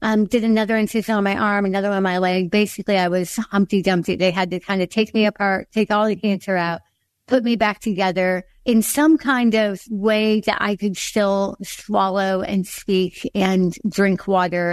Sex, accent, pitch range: female, American, 180-210 Hz